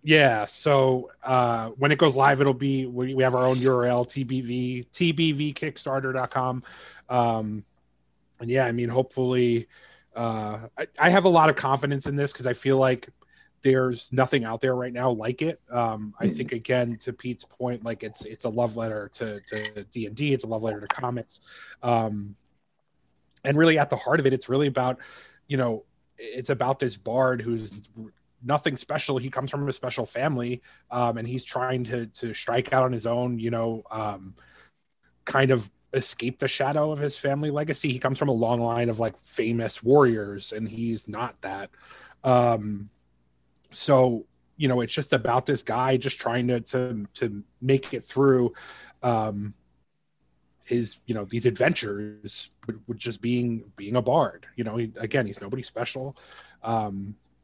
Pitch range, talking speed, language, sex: 115-130 Hz, 175 wpm, English, male